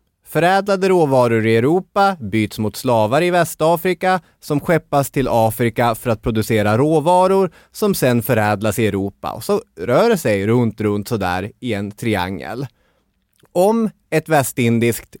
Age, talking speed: 20-39, 140 wpm